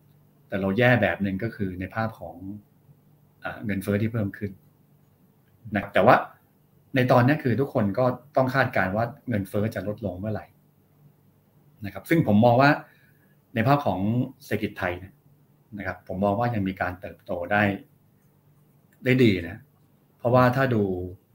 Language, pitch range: Thai, 100-140 Hz